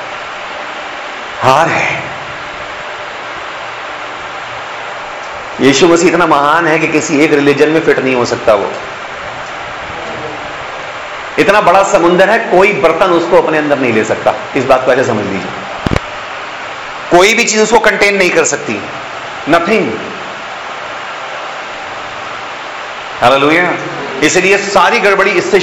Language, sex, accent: Hindi, male, native